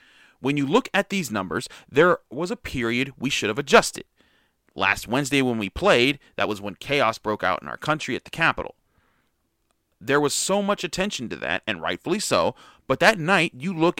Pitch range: 120-170 Hz